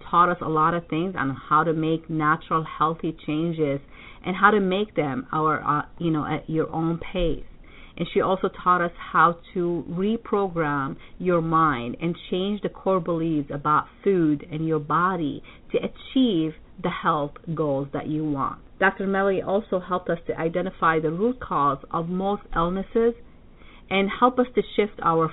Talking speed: 175 wpm